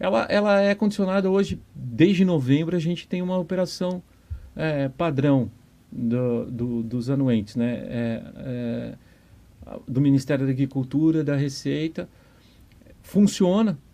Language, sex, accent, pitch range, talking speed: Portuguese, male, Brazilian, 130-180 Hz, 100 wpm